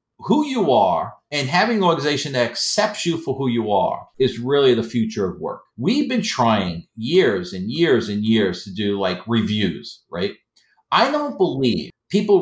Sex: male